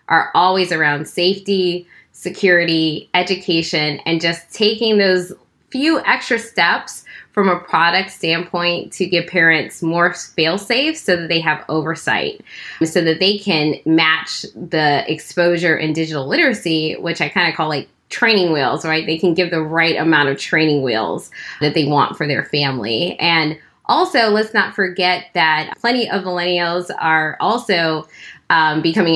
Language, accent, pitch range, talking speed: English, American, 155-185 Hz, 155 wpm